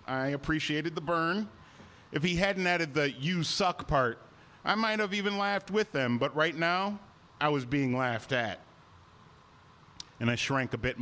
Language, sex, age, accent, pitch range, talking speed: English, male, 40-59, American, 130-165 Hz, 175 wpm